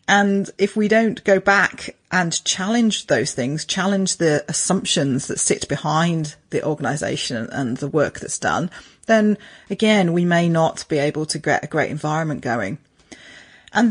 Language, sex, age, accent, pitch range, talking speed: English, female, 30-49, British, 160-195 Hz, 160 wpm